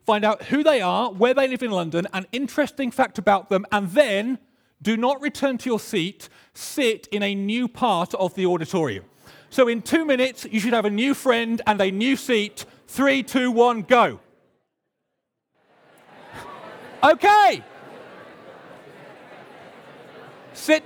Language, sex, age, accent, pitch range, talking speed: English, male, 40-59, British, 175-255 Hz, 145 wpm